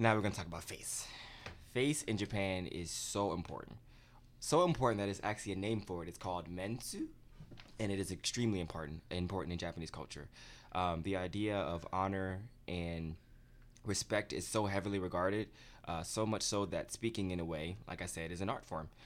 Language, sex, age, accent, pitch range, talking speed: English, male, 20-39, American, 85-110 Hz, 190 wpm